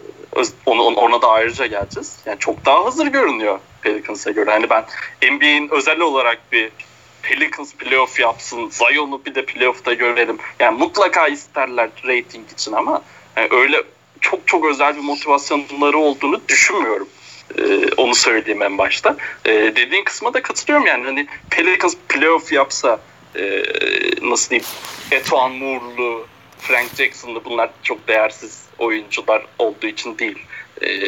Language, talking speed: Turkish, 135 wpm